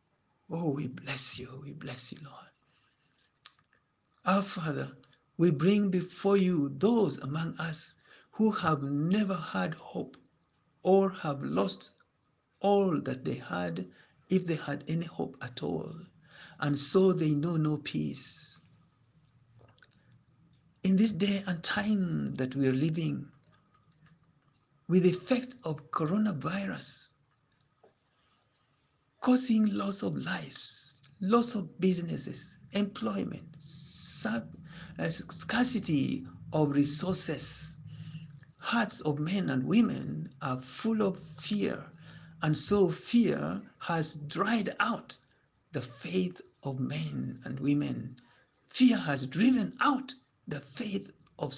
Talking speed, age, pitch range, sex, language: 110 wpm, 60-79, 145-195 Hz, male, English